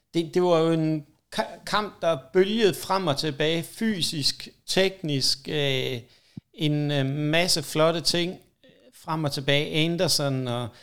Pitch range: 130-160 Hz